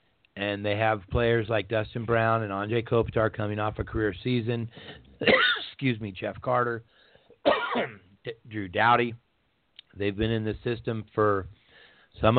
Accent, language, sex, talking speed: American, English, male, 135 wpm